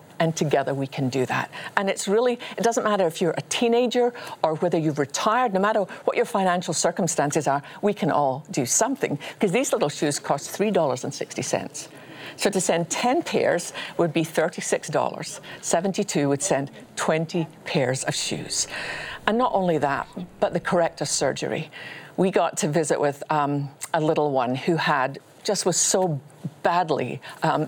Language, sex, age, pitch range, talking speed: English, female, 50-69, 155-205 Hz, 165 wpm